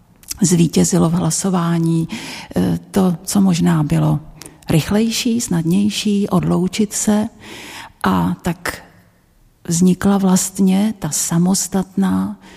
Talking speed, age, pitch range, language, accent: 80 wpm, 50-69, 170-200 Hz, Czech, native